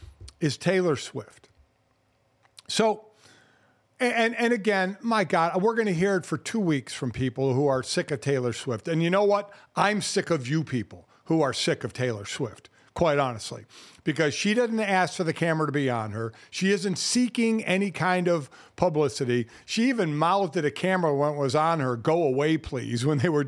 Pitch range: 130-185 Hz